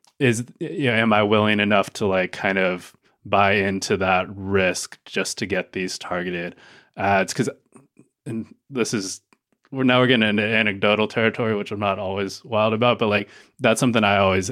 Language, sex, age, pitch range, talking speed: English, male, 20-39, 95-115 Hz, 185 wpm